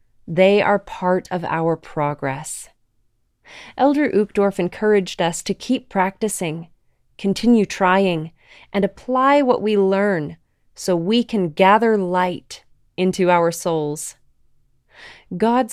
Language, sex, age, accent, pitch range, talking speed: English, female, 30-49, American, 160-200 Hz, 110 wpm